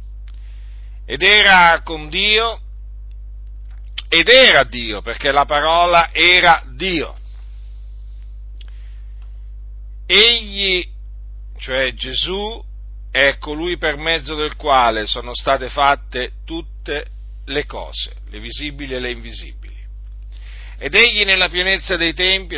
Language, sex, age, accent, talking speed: Italian, male, 50-69, native, 100 wpm